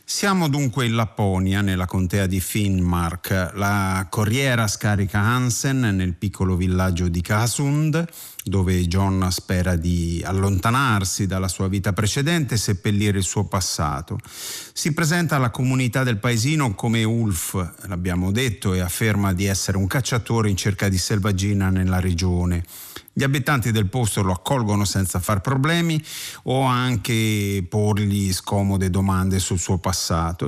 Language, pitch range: Italian, 95-115 Hz